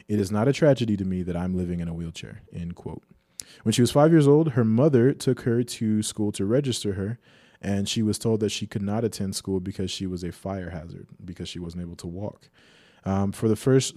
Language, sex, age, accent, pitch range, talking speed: English, male, 20-39, American, 100-120 Hz, 240 wpm